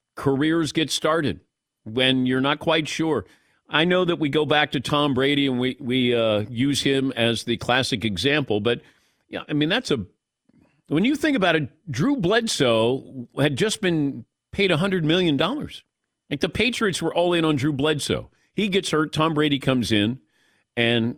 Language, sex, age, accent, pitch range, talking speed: English, male, 50-69, American, 125-165 Hz, 180 wpm